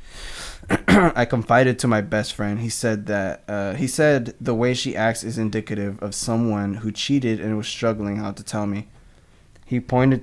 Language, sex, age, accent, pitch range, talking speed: English, male, 20-39, American, 105-125 Hz, 180 wpm